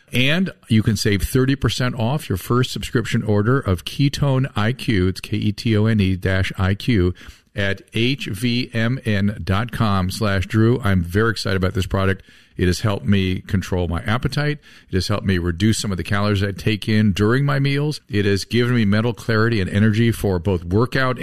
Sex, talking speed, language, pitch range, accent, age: male, 165 wpm, English, 95-120 Hz, American, 50-69